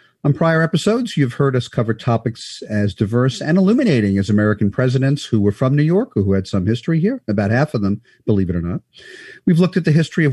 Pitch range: 105-160 Hz